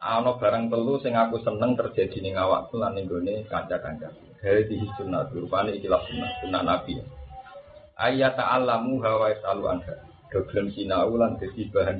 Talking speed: 145 wpm